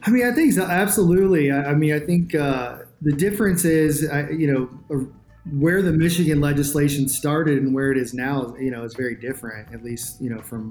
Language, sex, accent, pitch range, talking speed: English, male, American, 120-145 Hz, 215 wpm